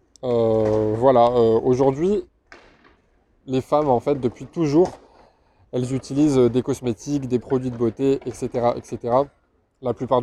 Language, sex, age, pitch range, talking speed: French, male, 20-39, 115-135 Hz, 130 wpm